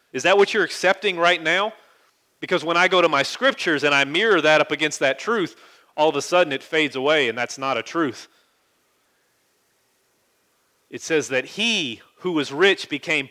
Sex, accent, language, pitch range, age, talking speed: male, American, English, 140-180 Hz, 40-59, 190 wpm